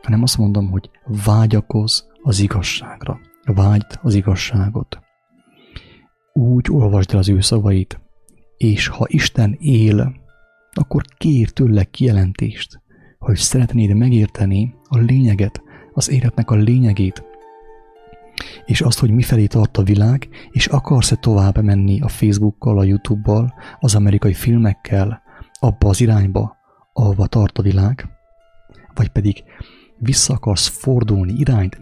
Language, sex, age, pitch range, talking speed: English, male, 30-49, 100-125 Hz, 125 wpm